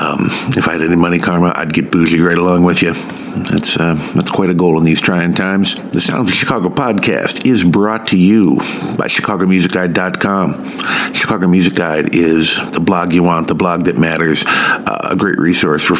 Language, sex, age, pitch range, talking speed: English, male, 50-69, 85-95 Hz, 195 wpm